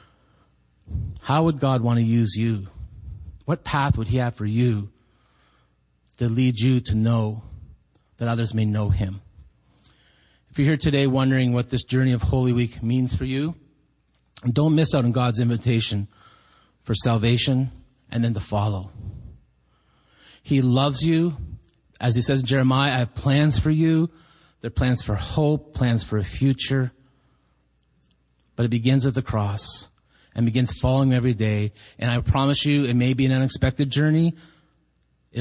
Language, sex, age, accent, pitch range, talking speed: English, male, 30-49, American, 105-130 Hz, 160 wpm